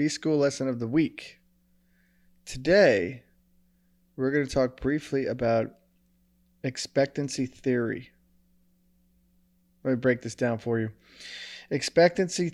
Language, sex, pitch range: English, male, 120-180 Hz